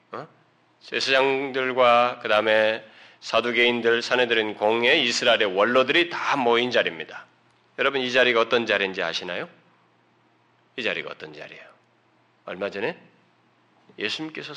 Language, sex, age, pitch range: Korean, male, 40-59, 125-190 Hz